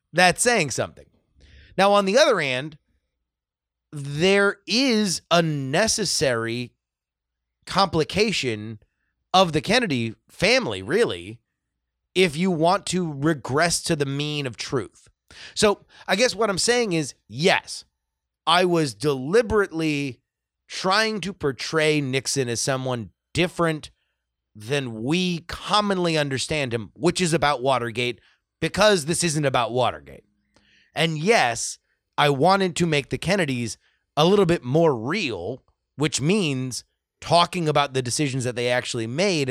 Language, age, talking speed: English, 30-49, 125 wpm